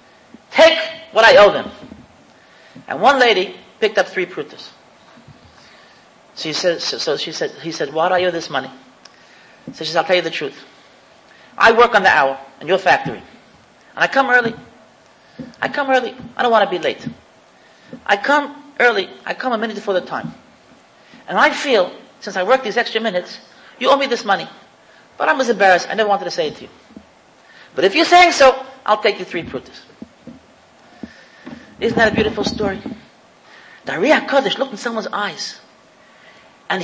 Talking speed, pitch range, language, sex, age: 180 wpm, 210-295 Hz, English, male, 40-59